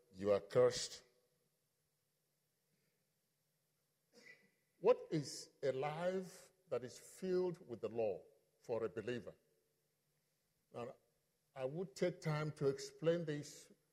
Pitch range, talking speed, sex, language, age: 140-180 Hz, 105 wpm, male, English, 50-69